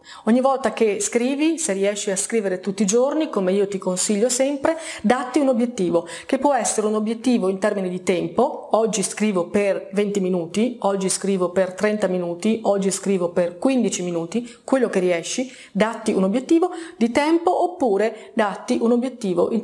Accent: native